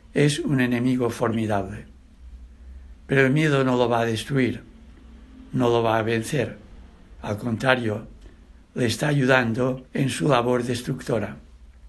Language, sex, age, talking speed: English, male, 60-79, 130 wpm